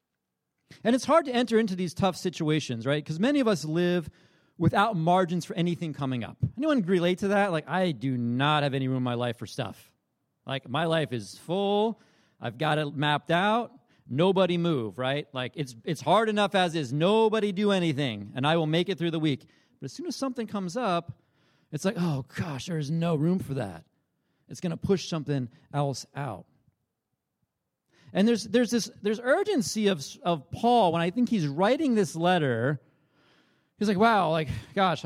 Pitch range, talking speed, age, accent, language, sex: 145-190 Hz, 190 wpm, 40-59, American, English, male